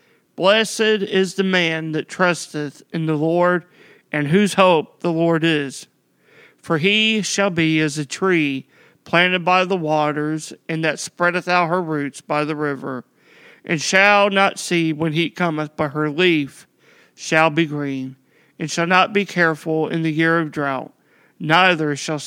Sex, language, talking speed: male, English, 160 wpm